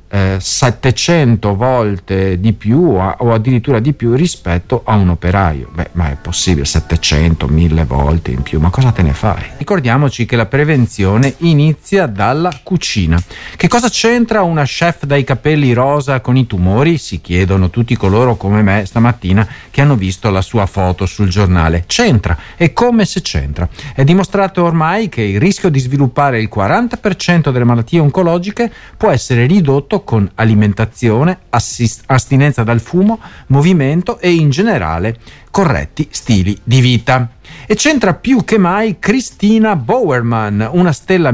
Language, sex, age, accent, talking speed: Italian, male, 50-69, native, 150 wpm